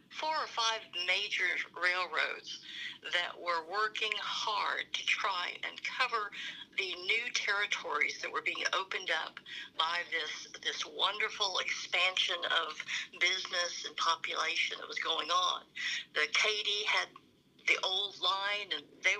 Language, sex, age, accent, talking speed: English, female, 60-79, American, 130 wpm